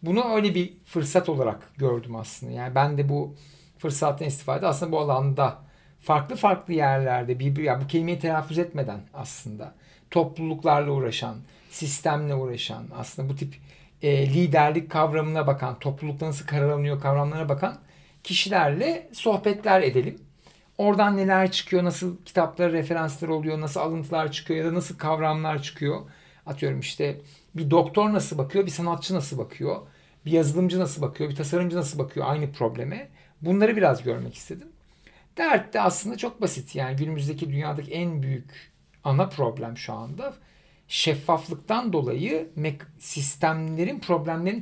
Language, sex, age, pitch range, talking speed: Turkish, male, 60-79, 140-175 Hz, 135 wpm